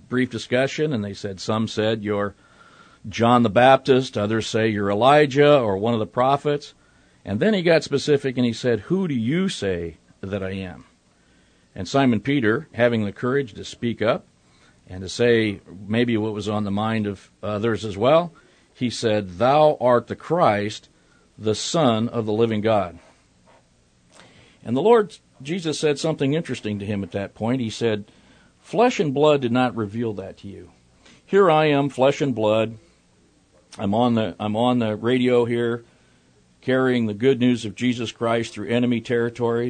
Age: 50-69